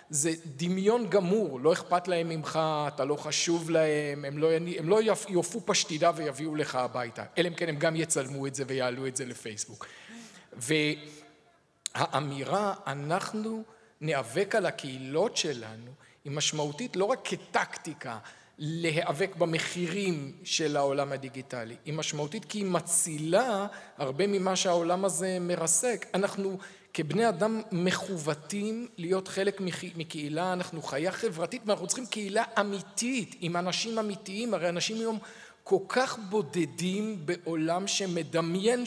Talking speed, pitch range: 130 wpm, 155-200 Hz